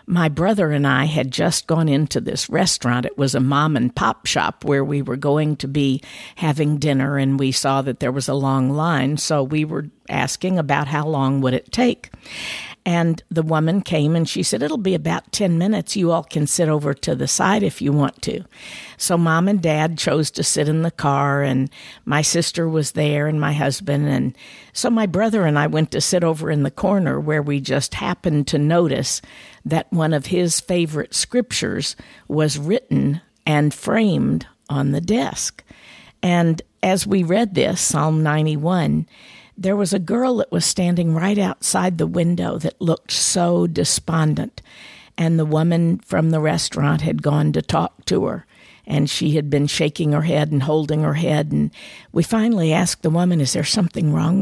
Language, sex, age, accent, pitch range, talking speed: English, female, 50-69, American, 140-175 Hz, 190 wpm